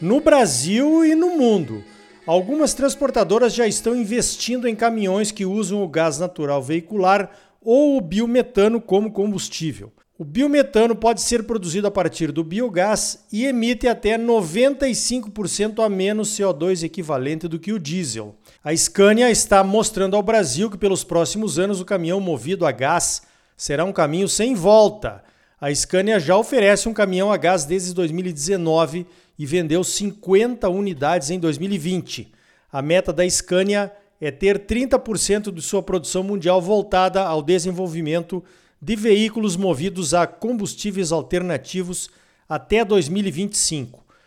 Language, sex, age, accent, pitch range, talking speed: Portuguese, male, 50-69, Brazilian, 175-220 Hz, 140 wpm